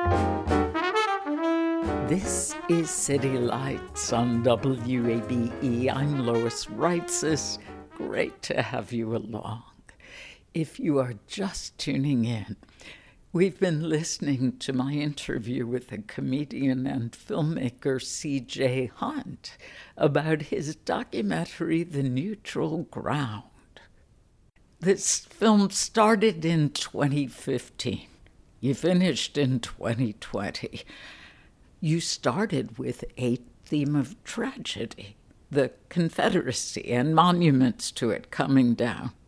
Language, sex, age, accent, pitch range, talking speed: English, female, 60-79, American, 125-155 Hz, 95 wpm